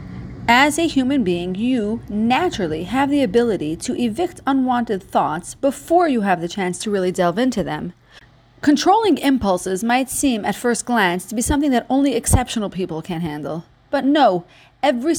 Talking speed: 165 wpm